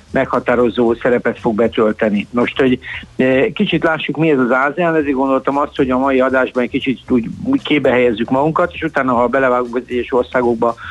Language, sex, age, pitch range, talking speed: Hungarian, male, 60-79, 115-135 Hz, 170 wpm